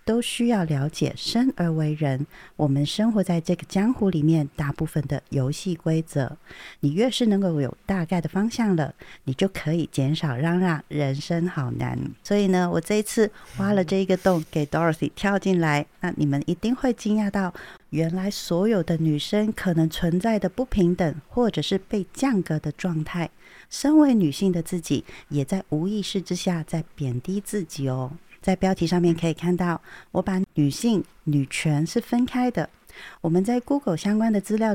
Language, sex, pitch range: Chinese, female, 155-205 Hz